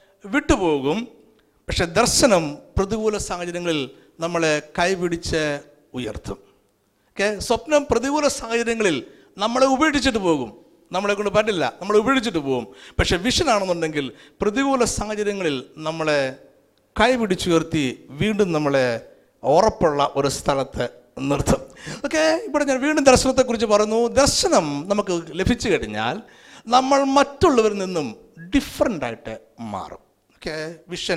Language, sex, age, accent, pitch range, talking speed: Malayalam, male, 60-79, native, 155-245 Hz, 95 wpm